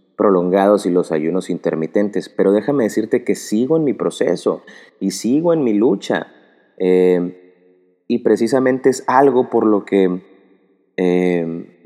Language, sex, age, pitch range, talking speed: Spanish, male, 30-49, 90-105 Hz, 135 wpm